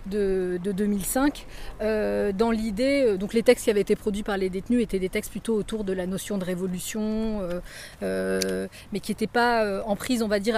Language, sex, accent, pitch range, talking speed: English, female, French, 195-230 Hz, 210 wpm